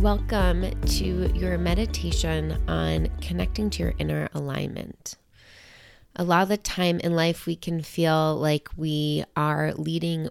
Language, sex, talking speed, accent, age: English, female, 140 wpm, American, 20-39